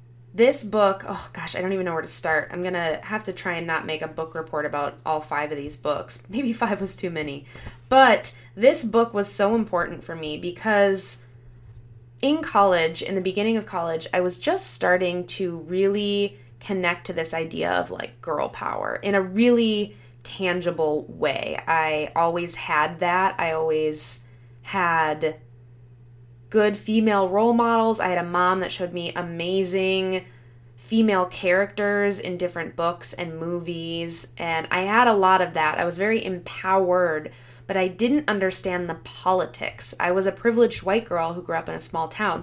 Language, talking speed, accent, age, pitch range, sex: English, 175 wpm, American, 20-39, 150-195 Hz, female